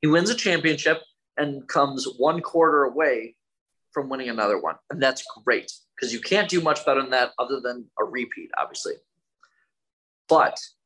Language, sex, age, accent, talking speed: English, male, 20-39, American, 165 wpm